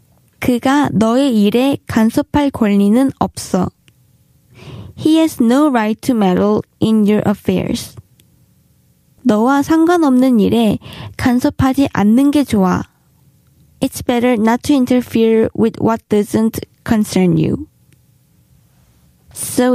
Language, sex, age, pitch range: Korean, female, 20-39, 210-275 Hz